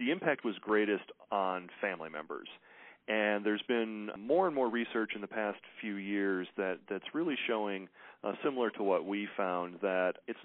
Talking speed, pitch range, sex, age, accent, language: 180 wpm, 95-125 Hz, male, 40-59, American, English